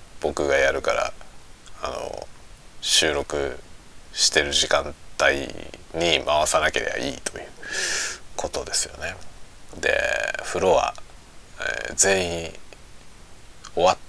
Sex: male